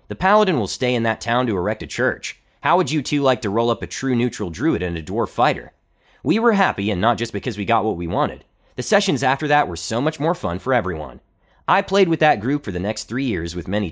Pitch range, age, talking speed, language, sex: 105-145 Hz, 30-49, 265 wpm, English, male